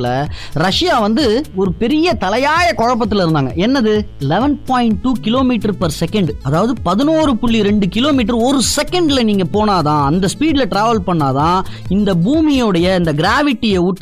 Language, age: Tamil, 20-39